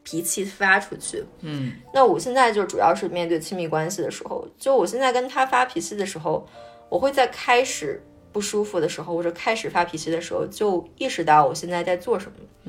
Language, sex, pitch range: Chinese, female, 175-265 Hz